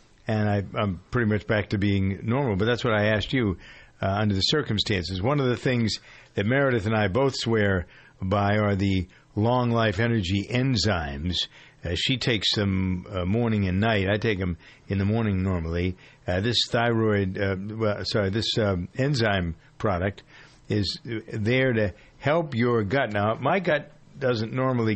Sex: male